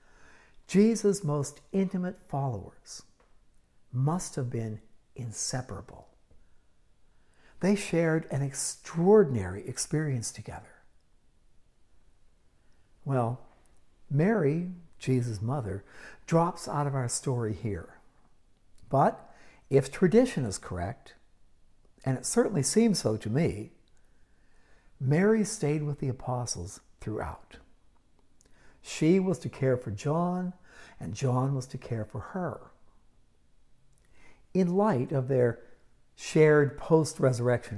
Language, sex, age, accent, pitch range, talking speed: English, male, 60-79, American, 105-160 Hz, 95 wpm